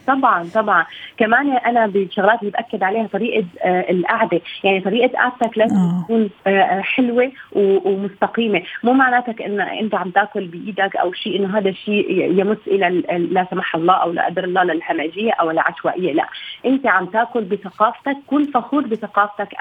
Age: 30-49